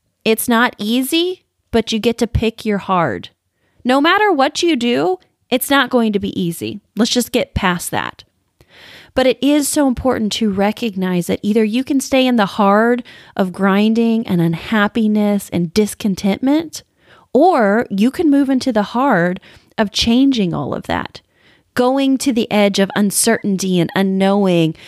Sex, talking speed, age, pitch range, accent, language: female, 160 wpm, 30-49, 180-245 Hz, American, English